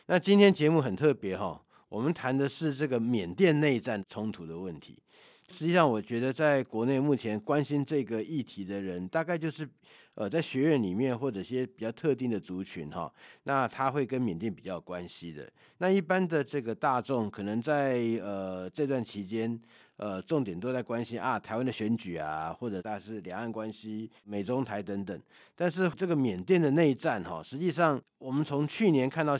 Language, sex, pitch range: Chinese, male, 105-145 Hz